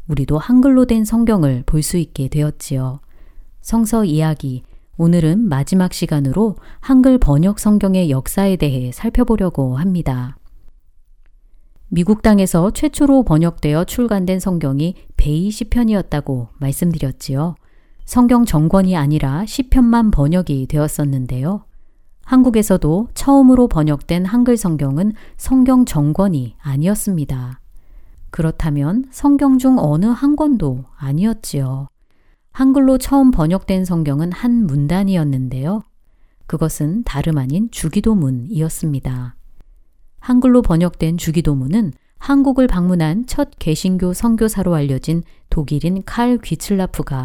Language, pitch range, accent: Korean, 145-220 Hz, native